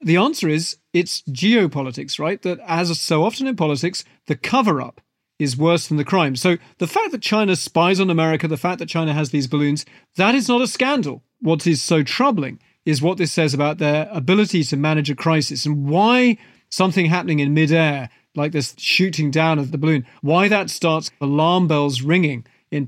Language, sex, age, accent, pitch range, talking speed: English, male, 40-59, British, 145-175 Hz, 195 wpm